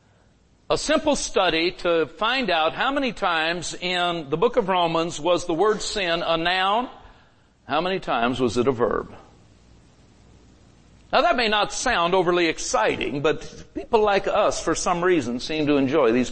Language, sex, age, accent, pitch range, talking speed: English, male, 60-79, American, 140-200 Hz, 165 wpm